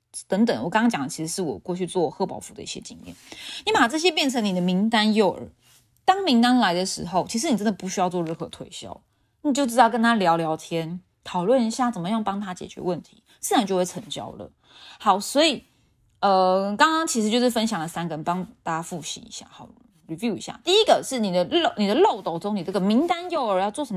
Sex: female